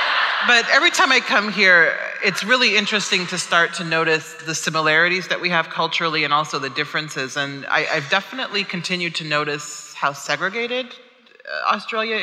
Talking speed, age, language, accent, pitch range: 160 wpm, 30-49, English, American, 150-195 Hz